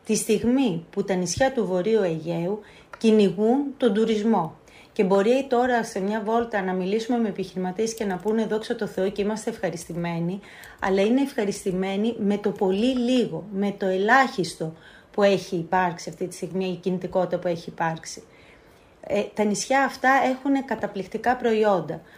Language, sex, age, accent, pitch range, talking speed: Greek, female, 30-49, native, 190-245 Hz, 155 wpm